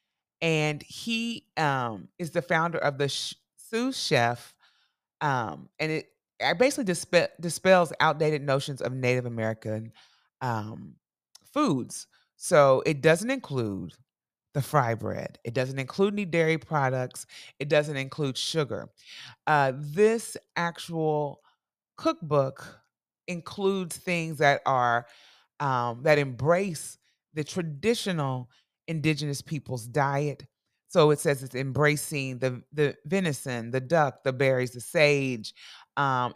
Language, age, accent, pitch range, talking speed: English, 30-49, American, 130-170 Hz, 120 wpm